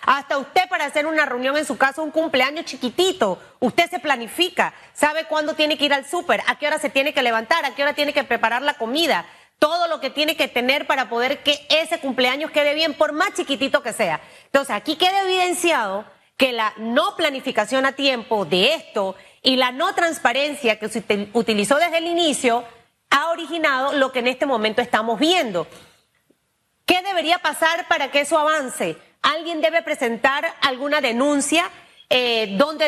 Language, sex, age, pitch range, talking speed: Spanish, female, 30-49, 245-315 Hz, 185 wpm